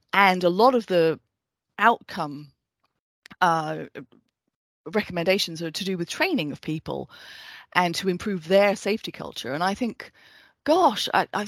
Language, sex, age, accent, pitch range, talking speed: English, female, 30-49, British, 165-200 Hz, 140 wpm